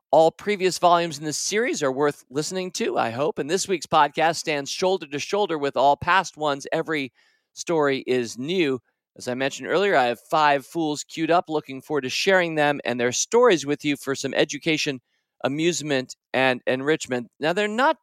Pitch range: 140-185 Hz